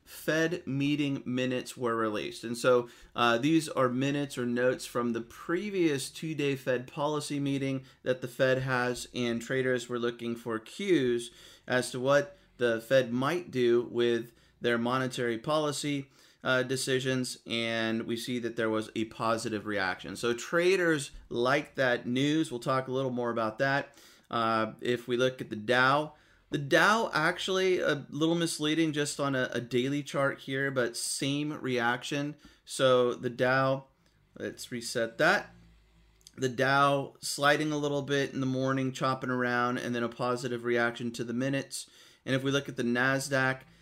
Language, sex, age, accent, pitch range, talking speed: English, male, 30-49, American, 120-145 Hz, 160 wpm